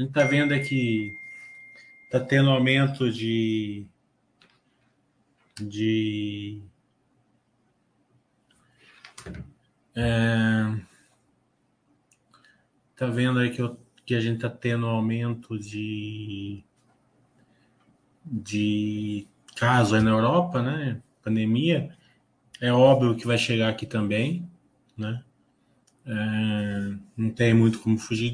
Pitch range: 110-130 Hz